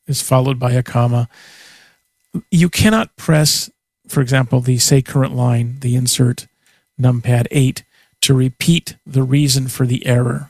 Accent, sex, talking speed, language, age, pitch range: American, male, 145 wpm, English, 40-59, 125-140 Hz